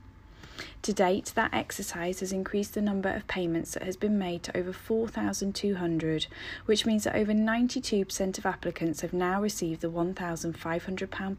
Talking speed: 155 wpm